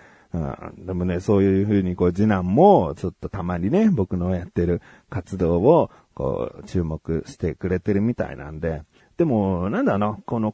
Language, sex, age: Japanese, male, 40-59